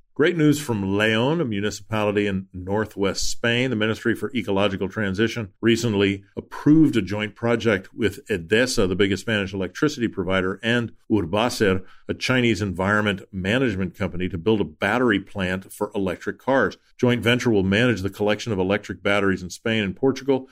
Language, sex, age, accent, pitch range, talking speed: English, male, 50-69, American, 95-120 Hz, 160 wpm